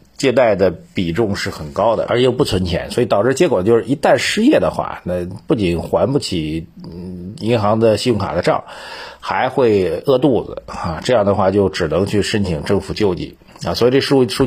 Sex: male